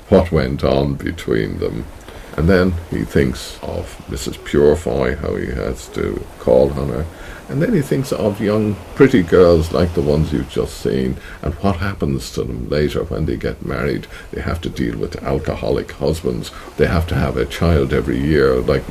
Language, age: English, 50-69